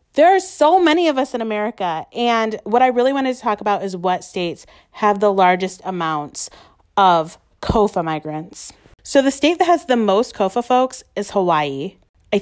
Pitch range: 180-225 Hz